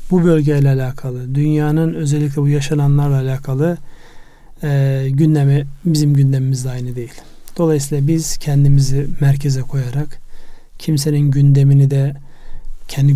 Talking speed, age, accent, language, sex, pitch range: 105 wpm, 40-59, native, Turkish, male, 135-155 Hz